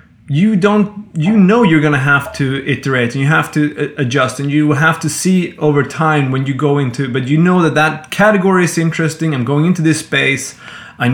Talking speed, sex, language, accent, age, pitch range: 220 wpm, male, English, Swedish, 20-39, 125-160 Hz